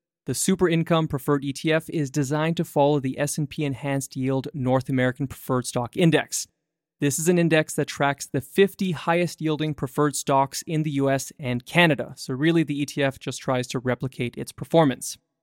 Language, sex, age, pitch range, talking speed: English, male, 20-39, 135-165 Hz, 170 wpm